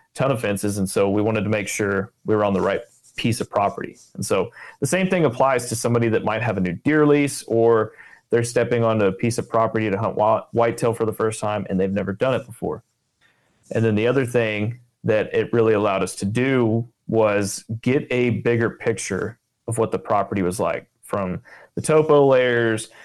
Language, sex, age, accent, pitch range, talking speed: English, male, 30-49, American, 105-125 Hz, 210 wpm